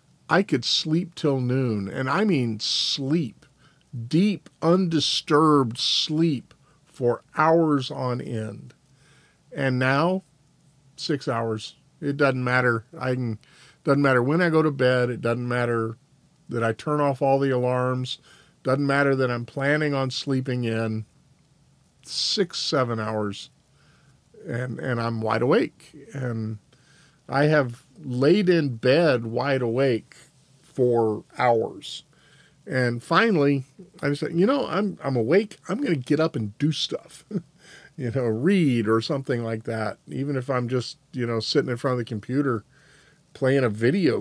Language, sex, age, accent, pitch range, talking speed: English, male, 50-69, American, 120-150 Hz, 145 wpm